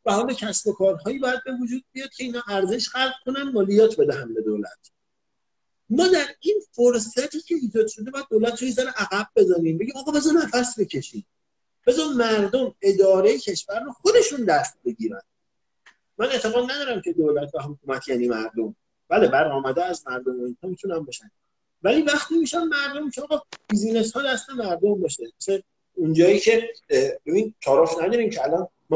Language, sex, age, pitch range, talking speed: Persian, male, 50-69, 160-255 Hz, 140 wpm